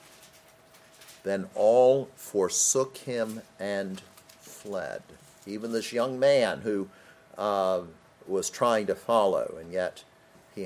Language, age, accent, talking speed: English, 50-69, American, 105 wpm